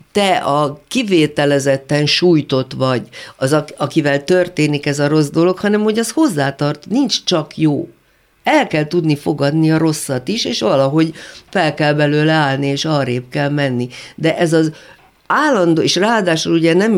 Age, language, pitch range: 50-69, Hungarian, 140-175 Hz